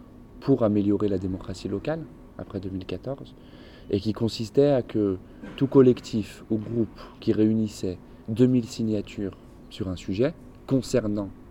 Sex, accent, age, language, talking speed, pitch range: male, French, 20-39, French, 125 wpm, 100-125 Hz